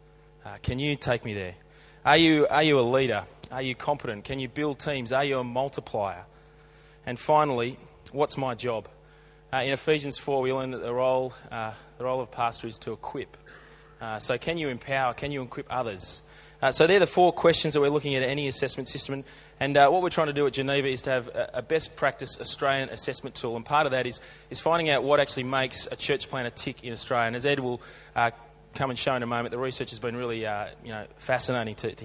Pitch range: 125-150 Hz